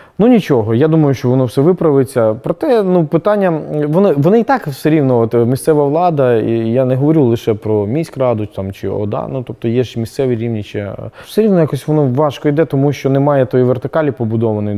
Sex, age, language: male, 20-39, Russian